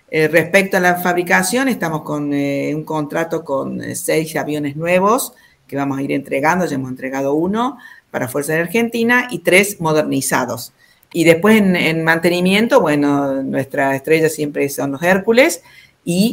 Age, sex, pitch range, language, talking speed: 50-69, female, 145-185 Hz, Spanish, 160 wpm